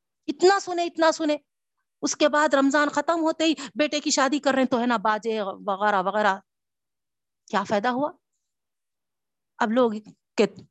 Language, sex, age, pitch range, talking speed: Urdu, female, 50-69, 185-265 Hz, 160 wpm